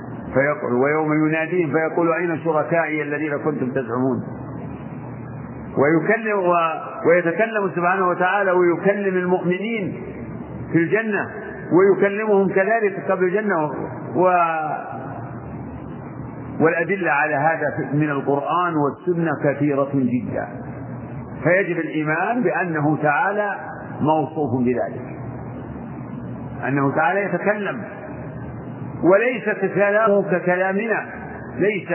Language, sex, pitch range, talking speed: Arabic, male, 150-190 Hz, 85 wpm